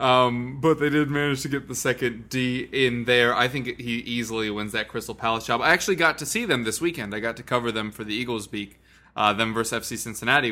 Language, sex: English, male